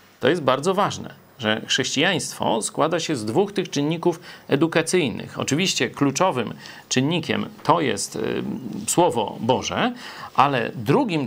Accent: native